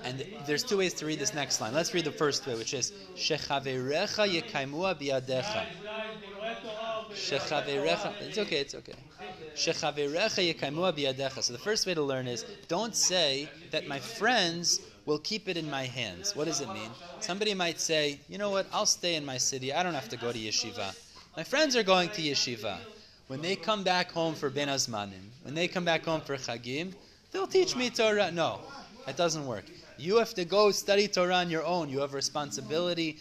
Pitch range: 130-180 Hz